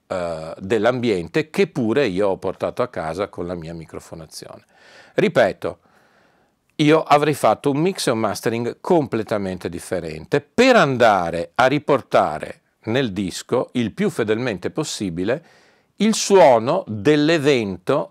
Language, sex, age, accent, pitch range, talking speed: Italian, male, 50-69, native, 90-145 Hz, 120 wpm